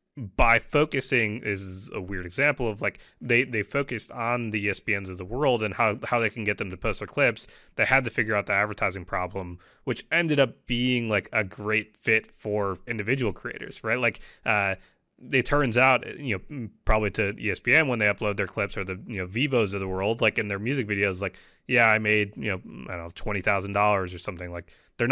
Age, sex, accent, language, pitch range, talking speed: 20-39, male, American, English, 95-125 Hz, 220 wpm